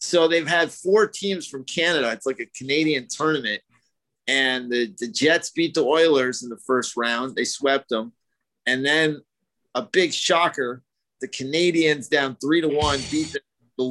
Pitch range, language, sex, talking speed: 130-155 Hz, English, male, 165 wpm